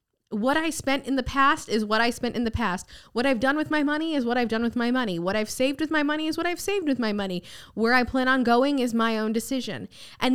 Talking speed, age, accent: 285 wpm, 20-39, American